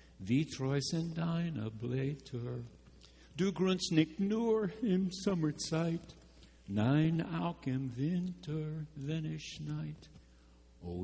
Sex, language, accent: male, English, American